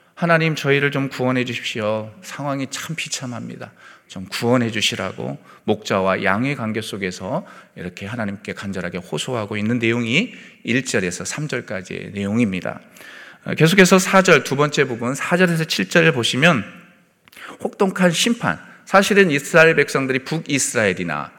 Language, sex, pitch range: Korean, male, 120-180 Hz